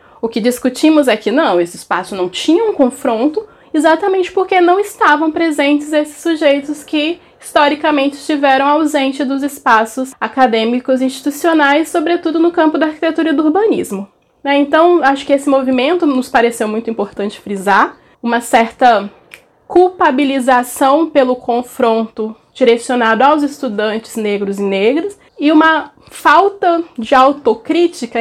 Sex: female